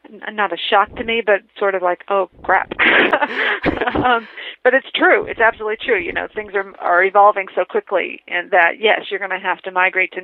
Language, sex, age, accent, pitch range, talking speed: English, female, 40-59, American, 195-235 Hz, 210 wpm